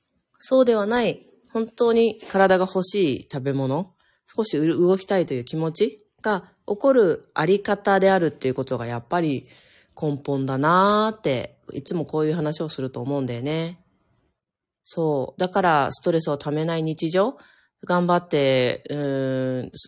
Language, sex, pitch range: Japanese, female, 140-190 Hz